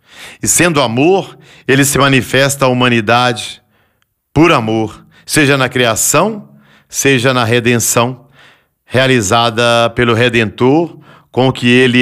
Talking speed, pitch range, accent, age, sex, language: 115 wpm, 115-155 Hz, Brazilian, 40-59, male, Portuguese